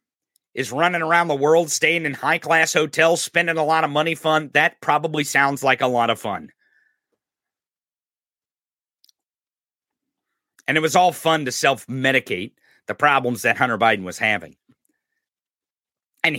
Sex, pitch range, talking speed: male, 130-165 Hz, 140 wpm